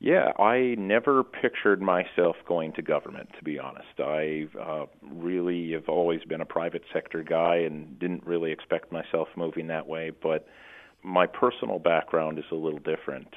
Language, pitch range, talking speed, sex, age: English, 80-90 Hz, 160 wpm, male, 40-59